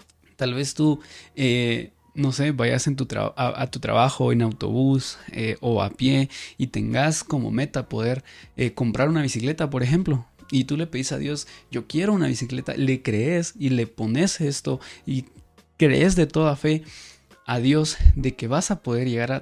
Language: Spanish